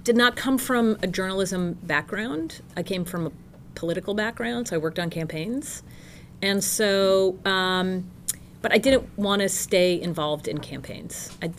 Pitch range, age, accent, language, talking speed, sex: 160-200 Hz, 30-49, American, English, 160 wpm, female